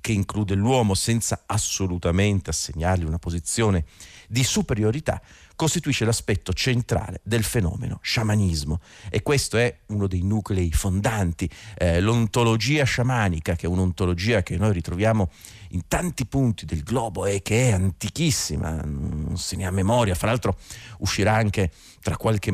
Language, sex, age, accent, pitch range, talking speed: Italian, male, 40-59, native, 90-110 Hz, 140 wpm